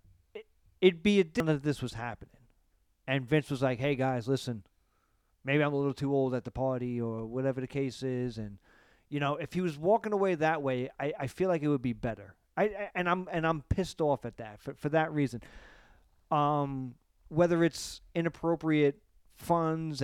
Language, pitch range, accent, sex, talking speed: English, 125-160 Hz, American, male, 200 wpm